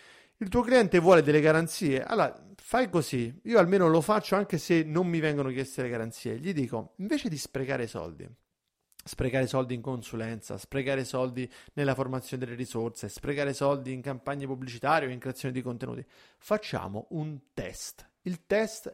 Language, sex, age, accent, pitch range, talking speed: Italian, male, 30-49, native, 130-190 Hz, 165 wpm